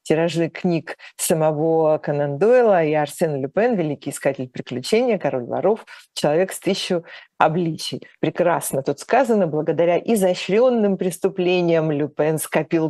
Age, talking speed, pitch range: 40-59, 115 wpm, 155-185 Hz